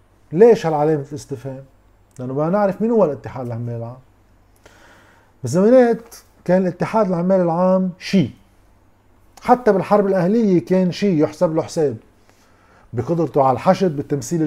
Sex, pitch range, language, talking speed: male, 110-175 Hz, Arabic, 120 wpm